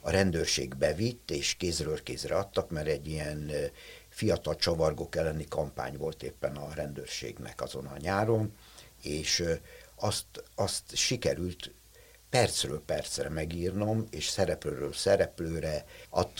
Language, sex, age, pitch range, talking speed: Hungarian, male, 60-79, 80-100 Hz, 105 wpm